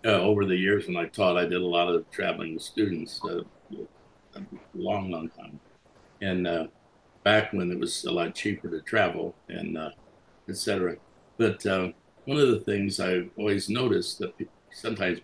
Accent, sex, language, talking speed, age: American, male, English, 180 wpm, 60-79